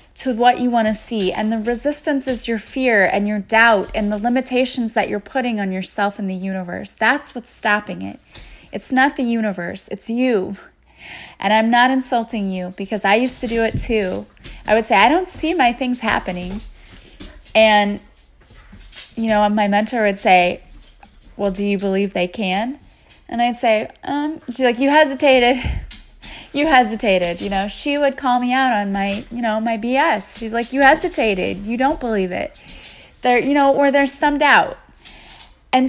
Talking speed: 180 wpm